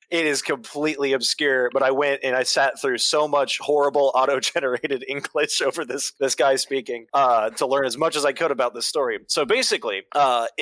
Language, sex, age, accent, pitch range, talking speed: English, male, 20-39, American, 125-165 Hz, 200 wpm